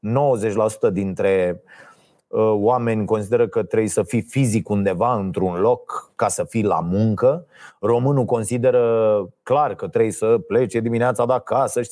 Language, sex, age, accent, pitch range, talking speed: Romanian, male, 30-49, native, 115-150 Hz, 135 wpm